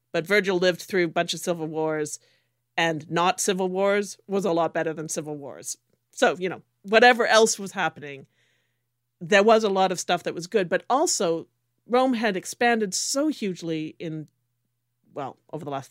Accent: American